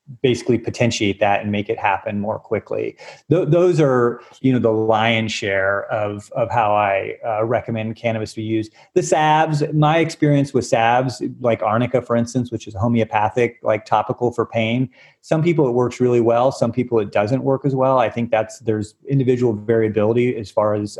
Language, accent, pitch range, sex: English, American, 110-130 Hz, male